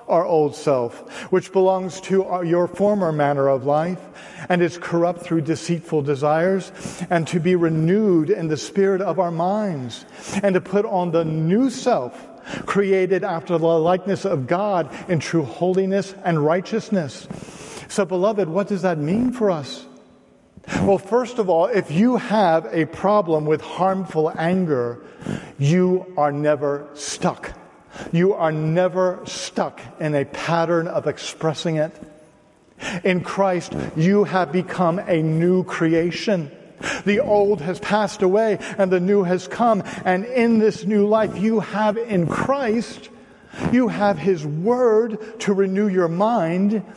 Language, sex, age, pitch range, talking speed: English, male, 50-69, 165-205 Hz, 145 wpm